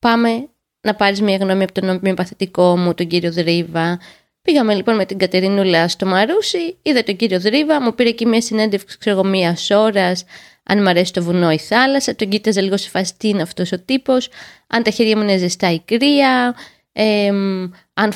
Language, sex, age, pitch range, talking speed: Greek, female, 20-39, 190-250 Hz, 190 wpm